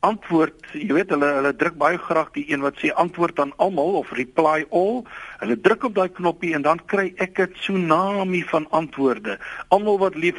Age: 60-79